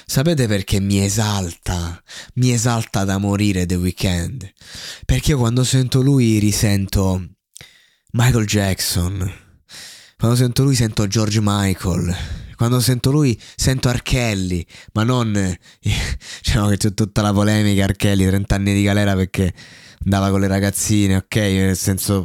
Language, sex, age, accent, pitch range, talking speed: Italian, male, 20-39, native, 95-110 Hz, 140 wpm